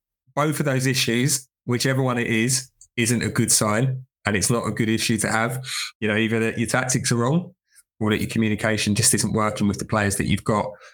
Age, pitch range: 20-39, 105-120 Hz